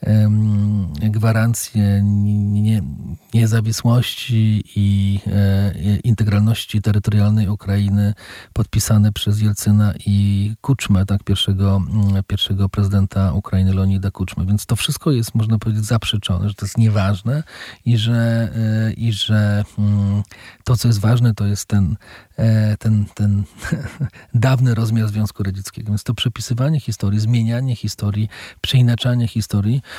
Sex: male